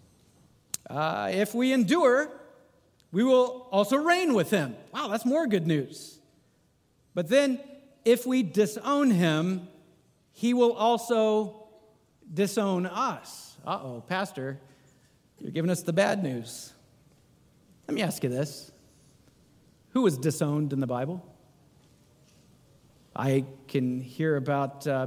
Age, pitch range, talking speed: 50-69, 145-200 Hz, 120 wpm